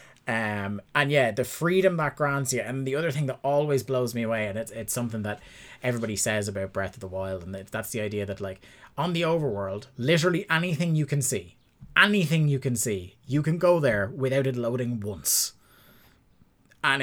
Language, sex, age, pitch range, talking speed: English, male, 20-39, 105-135 Hz, 195 wpm